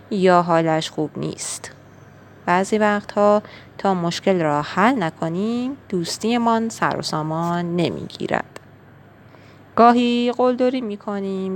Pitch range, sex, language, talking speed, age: 165-220 Hz, female, Persian, 100 wpm, 30-49